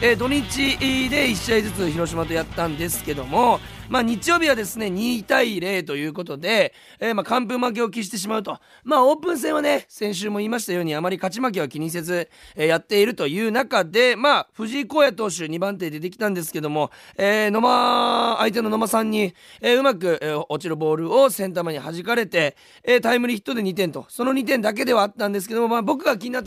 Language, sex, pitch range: Japanese, male, 175-245 Hz